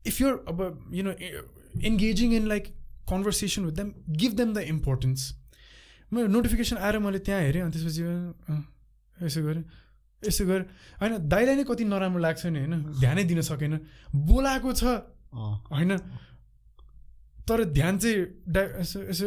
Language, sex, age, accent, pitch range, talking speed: English, male, 20-39, Indian, 145-220 Hz, 70 wpm